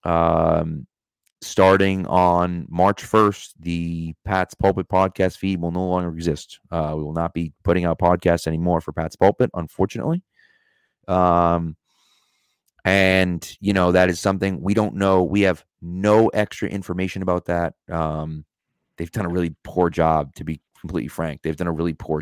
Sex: male